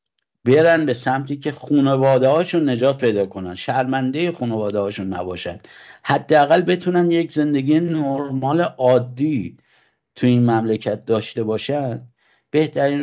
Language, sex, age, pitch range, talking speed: English, male, 50-69, 115-145 Hz, 115 wpm